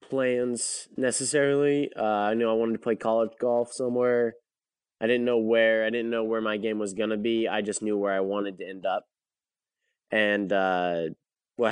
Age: 20-39